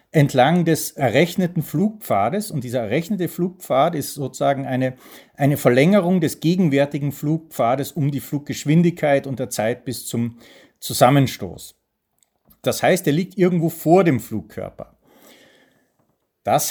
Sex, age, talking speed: male, 40-59, 120 wpm